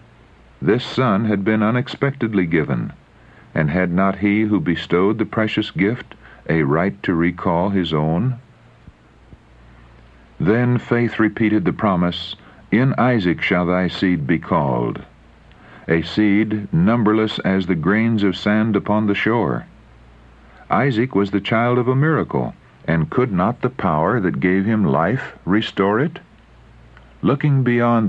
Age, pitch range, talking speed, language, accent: 60-79, 85-110 Hz, 135 wpm, English, American